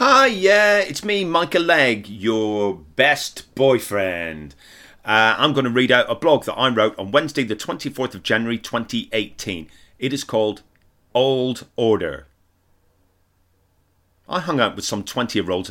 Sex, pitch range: male, 90-115 Hz